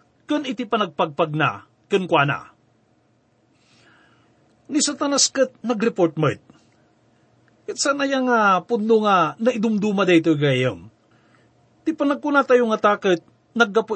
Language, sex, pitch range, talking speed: English, male, 185-260 Hz, 120 wpm